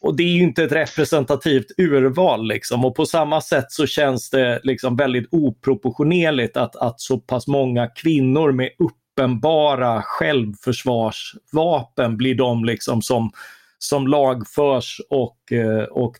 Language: Swedish